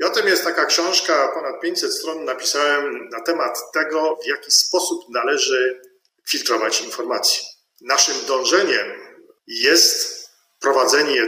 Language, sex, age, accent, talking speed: Polish, male, 40-59, native, 120 wpm